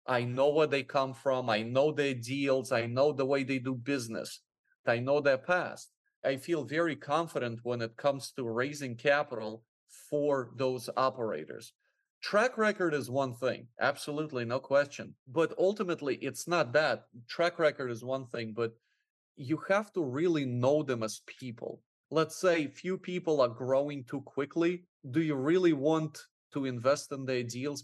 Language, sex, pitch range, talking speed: English, male, 130-165 Hz, 170 wpm